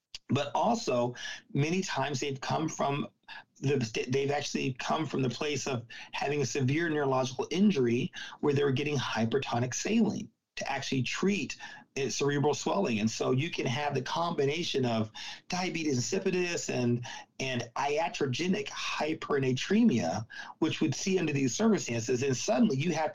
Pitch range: 125-160 Hz